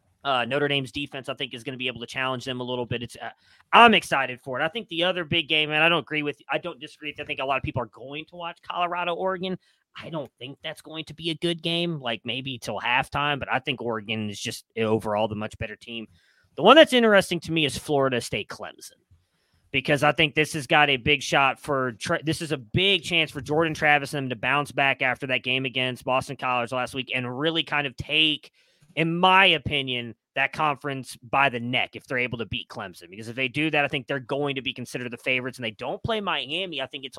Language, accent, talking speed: English, American, 255 wpm